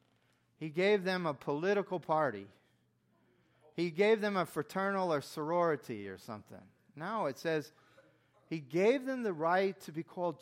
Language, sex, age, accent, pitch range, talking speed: English, male, 40-59, American, 125-185 Hz, 150 wpm